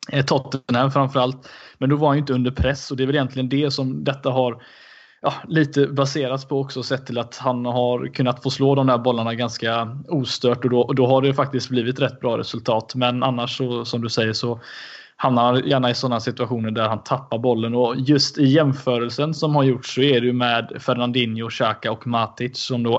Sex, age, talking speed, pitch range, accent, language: male, 20-39, 210 wpm, 120-135 Hz, native, Swedish